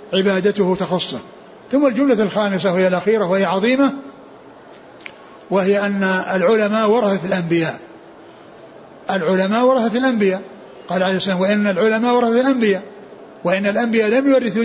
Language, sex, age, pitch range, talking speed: Arabic, male, 60-79, 195-235 Hz, 120 wpm